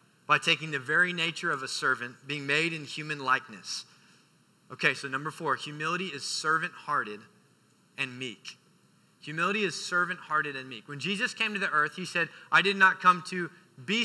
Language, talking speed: English, 175 wpm